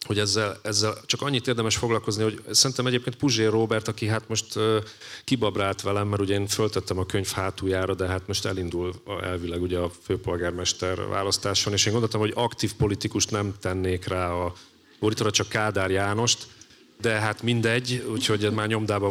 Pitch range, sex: 95-115 Hz, male